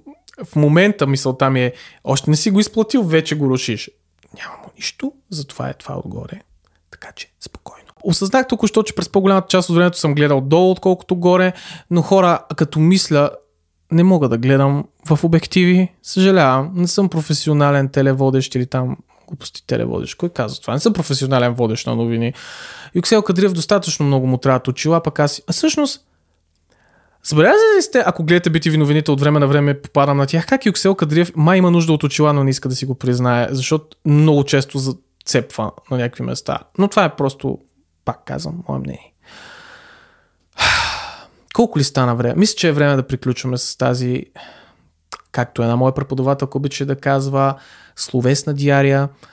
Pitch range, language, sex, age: 130-180 Hz, Bulgarian, male, 20-39